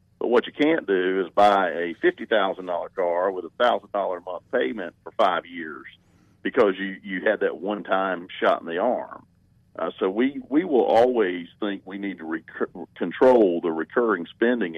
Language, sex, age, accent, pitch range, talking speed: English, male, 50-69, American, 90-135 Hz, 185 wpm